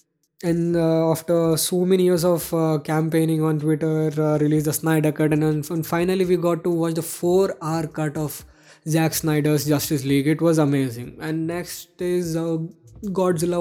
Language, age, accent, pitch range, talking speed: English, 20-39, Indian, 155-175 Hz, 175 wpm